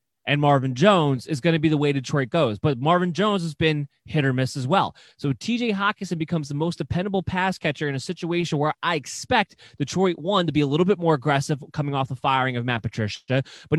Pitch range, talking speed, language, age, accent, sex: 130-175 Hz, 230 wpm, English, 20-39, American, male